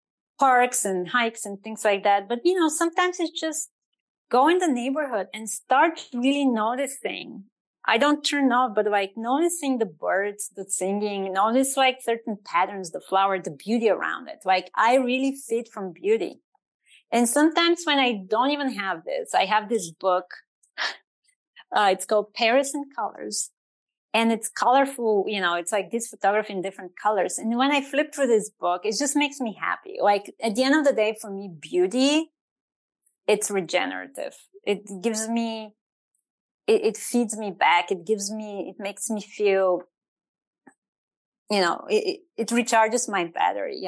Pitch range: 200-270 Hz